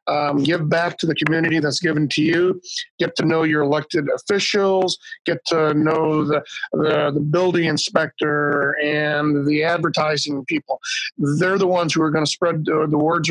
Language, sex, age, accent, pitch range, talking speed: English, male, 50-69, American, 150-185 Hz, 175 wpm